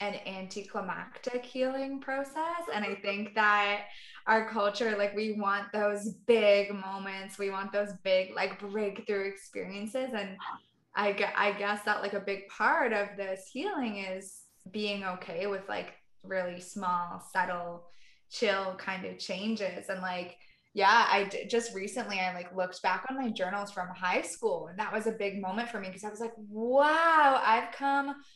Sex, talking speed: female, 165 wpm